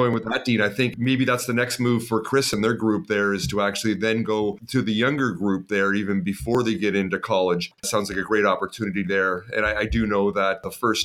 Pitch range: 105-130 Hz